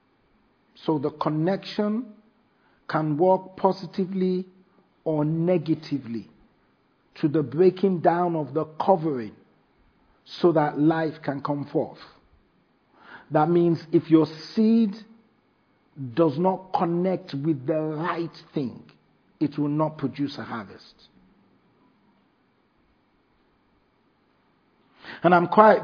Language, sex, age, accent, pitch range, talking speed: English, male, 50-69, Nigerian, 155-185 Hz, 100 wpm